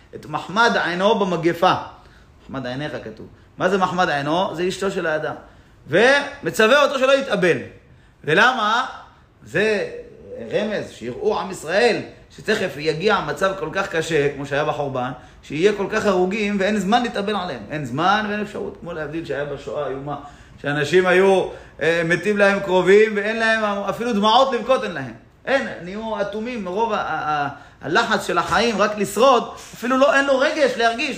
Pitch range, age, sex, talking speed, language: 150-225 Hz, 30-49, male, 160 wpm, Hebrew